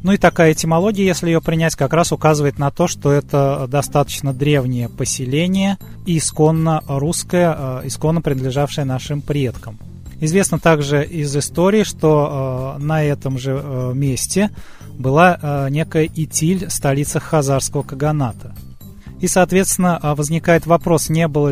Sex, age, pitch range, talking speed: male, 20-39, 130-160 Hz, 125 wpm